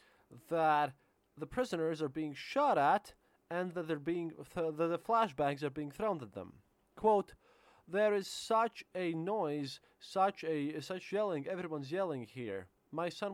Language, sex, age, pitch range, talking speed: English, male, 20-39, 150-205 Hz, 155 wpm